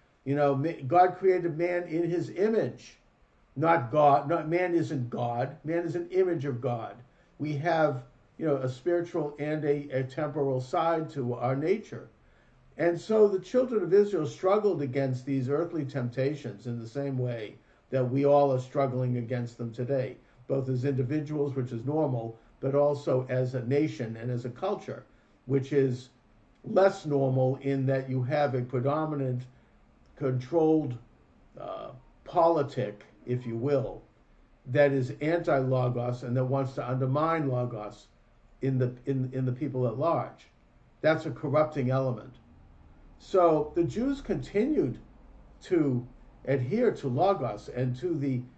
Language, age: English, 50-69